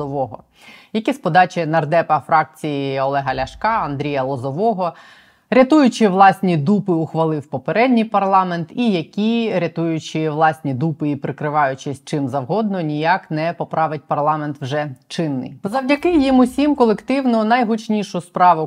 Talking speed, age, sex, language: 120 wpm, 20-39, female, Ukrainian